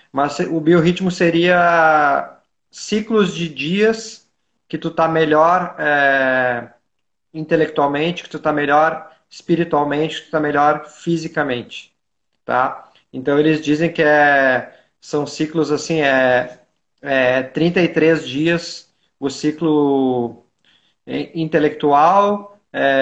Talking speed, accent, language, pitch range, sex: 95 wpm, Brazilian, Portuguese, 145-175 Hz, male